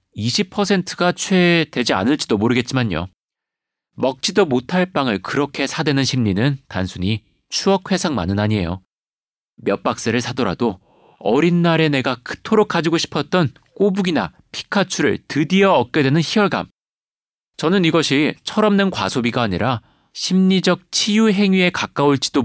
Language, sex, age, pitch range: Korean, male, 40-59, 110-170 Hz